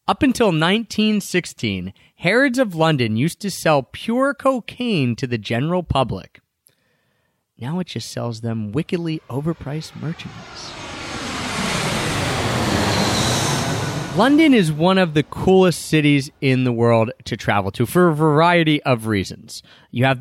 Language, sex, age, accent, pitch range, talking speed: English, male, 30-49, American, 120-175 Hz, 130 wpm